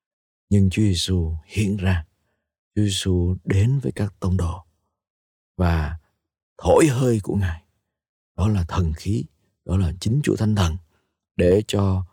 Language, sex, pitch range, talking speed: Vietnamese, male, 85-100 Hz, 145 wpm